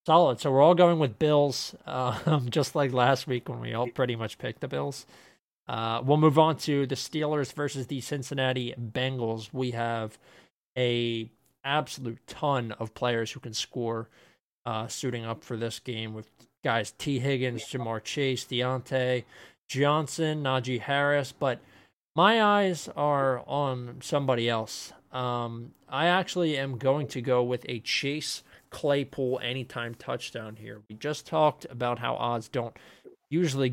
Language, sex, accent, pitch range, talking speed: English, male, American, 115-140 Hz, 155 wpm